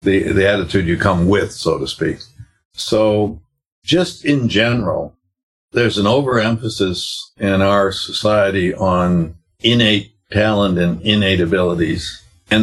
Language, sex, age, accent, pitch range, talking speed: English, male, 60-79, American, 90-110 Hz, 125 wpm